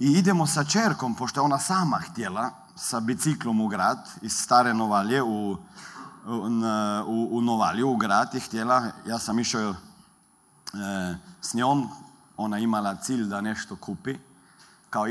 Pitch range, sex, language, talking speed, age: 115-165 Hz, male, Croatian, 150 wpm, 40-59